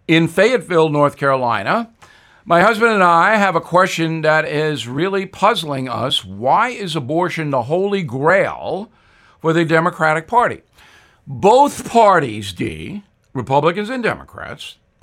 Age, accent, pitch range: 60-79, American, 140-195 Hz